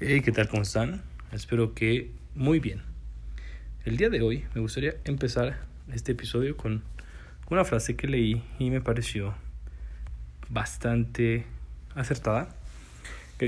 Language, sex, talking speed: Spanish, male, 125 wpm